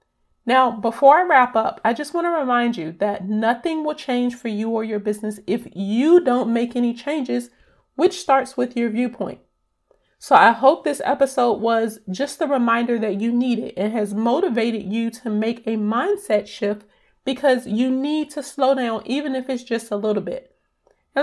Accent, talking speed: American, 190 wpm